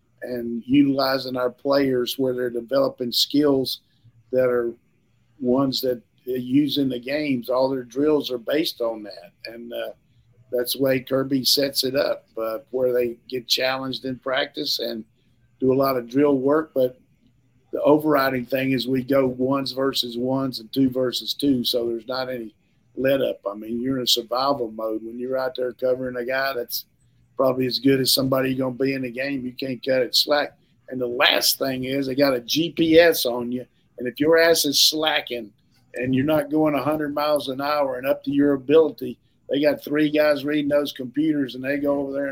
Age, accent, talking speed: 50-69, American, 200 wpm